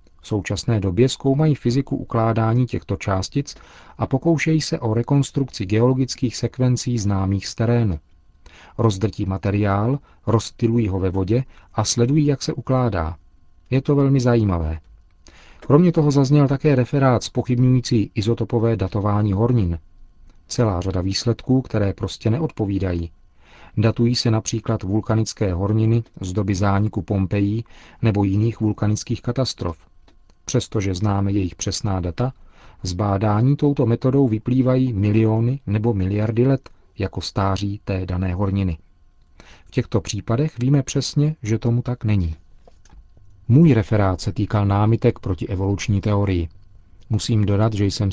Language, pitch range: Czech, 95-120 Hz